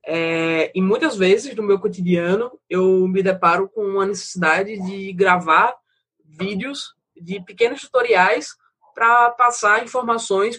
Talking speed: 120 wpm